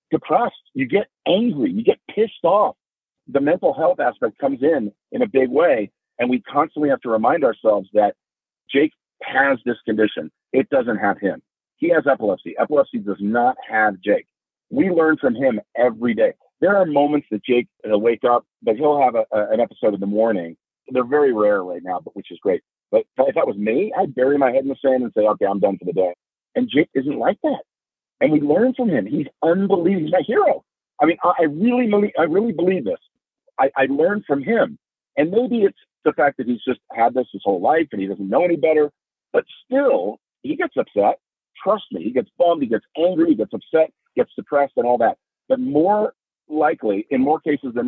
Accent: American